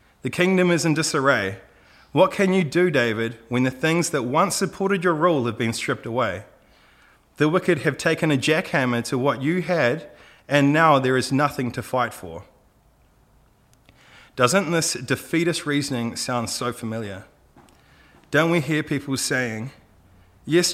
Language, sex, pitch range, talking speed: English, male, 125-165 Hz, 155 wpm